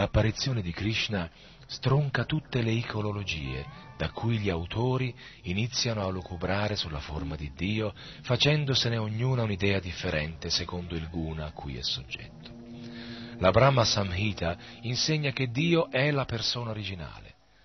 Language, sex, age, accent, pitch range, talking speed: Italian, male, 40-59, native, 95-135 Hz, 135 wpm